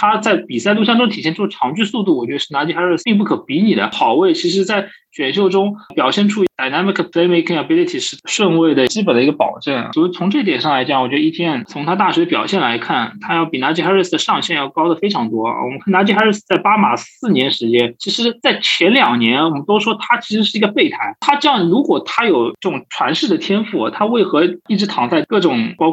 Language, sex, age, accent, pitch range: Chinese, male, 20-39, native, 165-225 Hz